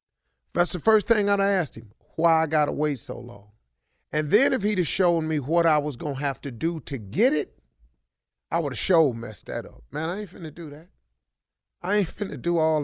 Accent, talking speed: American, 240 wpm